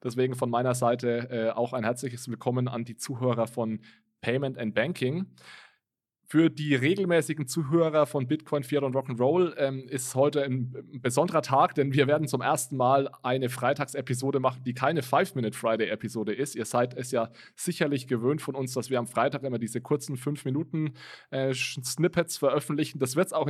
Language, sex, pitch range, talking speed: German, male, 120-140 Hz, 170 wpm